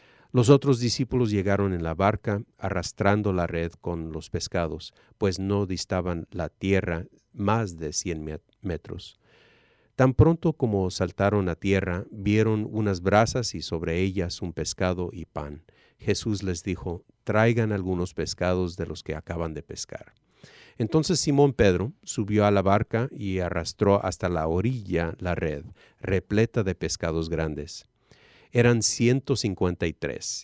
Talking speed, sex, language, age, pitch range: 140 wpm, male, English, 40-59, 85-110 Hz